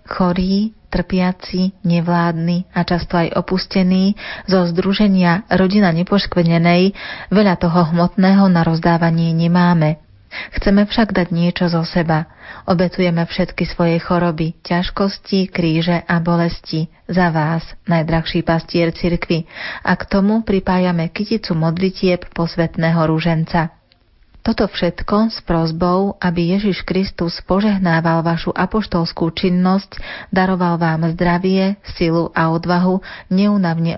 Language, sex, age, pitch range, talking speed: Slovak, female, 30-49, 165-185 Hz, 110 wpm